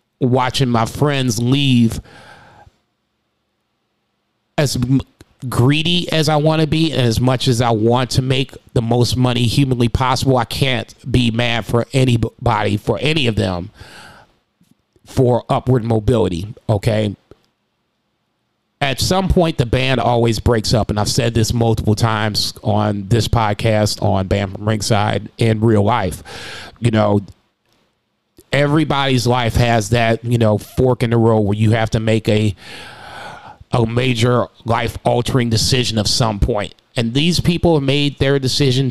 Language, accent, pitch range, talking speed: English, American, 110-130 Hz, 145 wpm